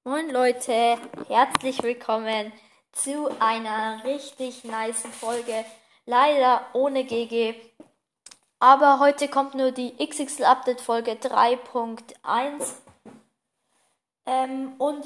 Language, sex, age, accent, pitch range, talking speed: German, female, 10-29, German, 230-270 Hz, 90 wpm